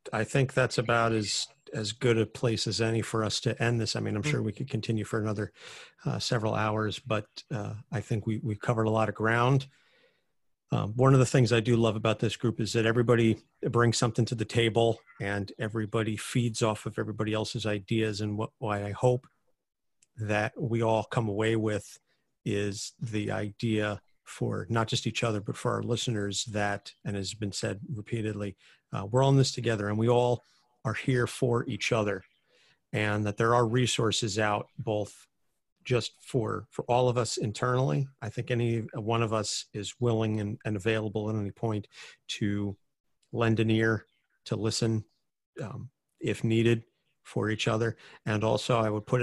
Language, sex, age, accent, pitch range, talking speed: English, male, 40-59, American, 105-120 Hz, 185 wpm